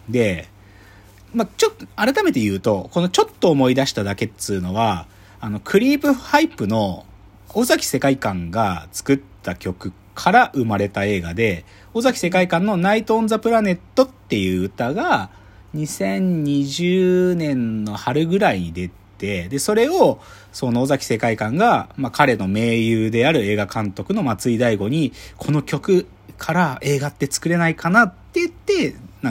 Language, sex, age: Japanese, male, 40-59